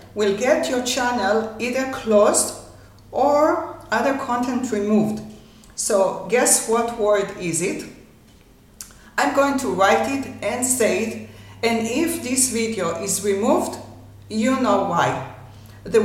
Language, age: English, 50-69